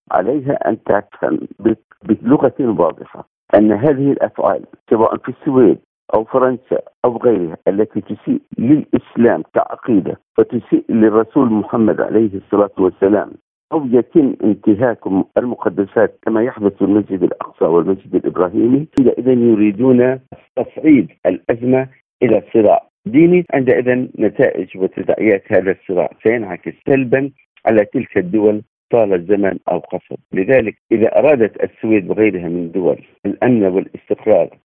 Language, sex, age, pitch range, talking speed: Arabic, male, 50-69, 95-130 Hz, 120 wpm